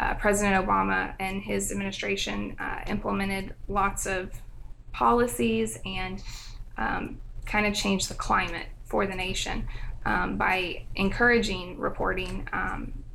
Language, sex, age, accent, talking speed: English, female, 20-39, American, 115 wpm